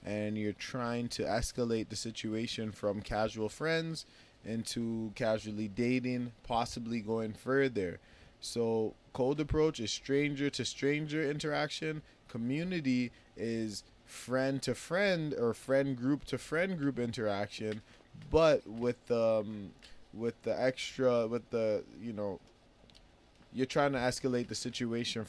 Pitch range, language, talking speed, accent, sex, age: 110-135 Hz, English, 125 wpm, American, male, 20-39